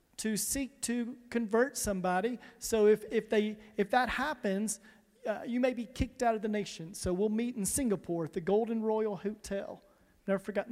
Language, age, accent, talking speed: English, 40-59, American, 185 wpm